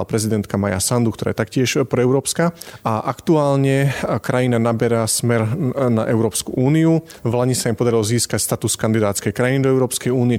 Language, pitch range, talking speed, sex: Slovak, 110-130 Hz, 150 wpm, male